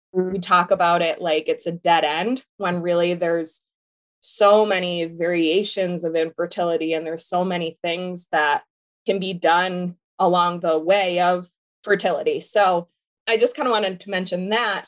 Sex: female